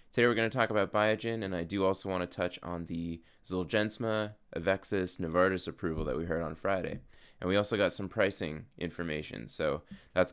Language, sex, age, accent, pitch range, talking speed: English, male, 20-39, American, 85-110 Hz, 200 wpm